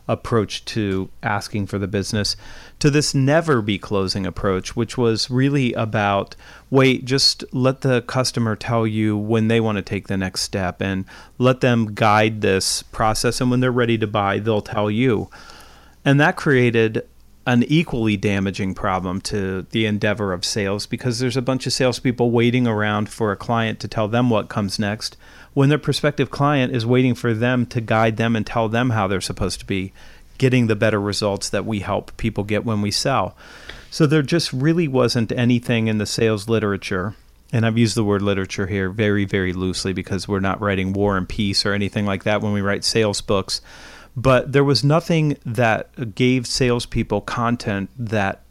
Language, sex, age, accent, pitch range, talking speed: English, male, 40-59, American, 100-125 Hz, 185 wpm